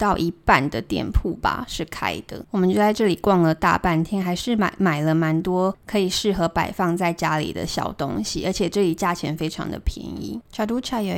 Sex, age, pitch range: female, 20-39, 165-210 Hz